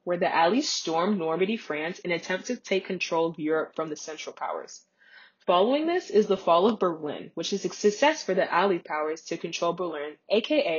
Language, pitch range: English, 165-220 Hz